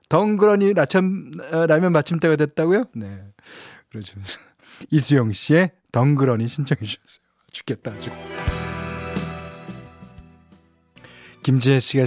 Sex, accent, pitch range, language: male, native, 110-155 Hz, Korean